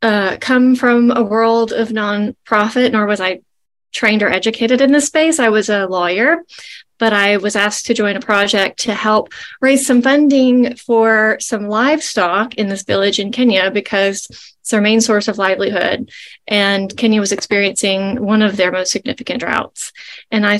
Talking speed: 175 wpm